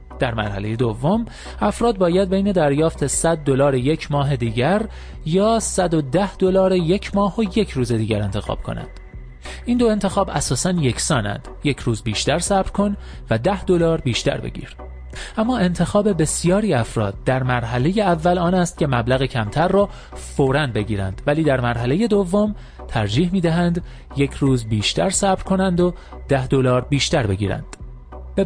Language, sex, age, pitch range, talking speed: Persian, male, 30-49, 115-190 Hz, 150 wpm